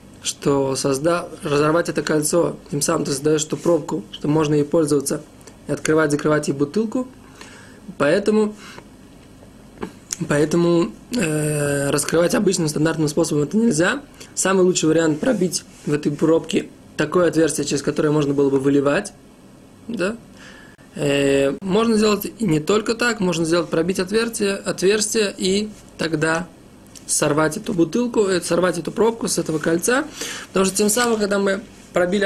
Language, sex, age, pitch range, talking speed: Russian, male, 20-39, 155-200 Hz, 135 wpm